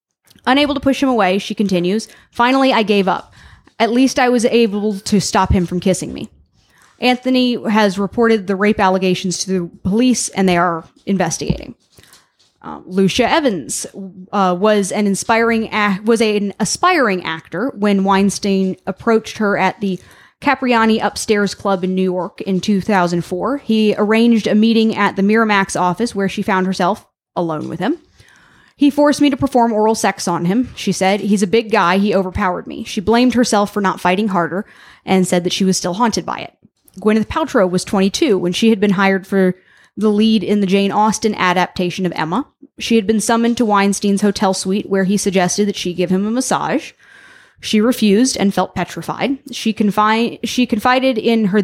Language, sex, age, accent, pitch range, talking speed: English, female, 10-29, American, 190-230 Hz, 180 wpm